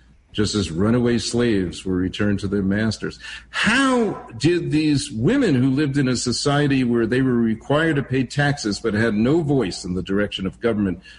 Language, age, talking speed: English, 50-69, 180 wpm